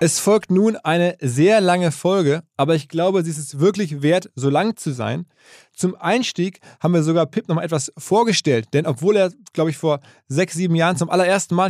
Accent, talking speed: German, 200 wpm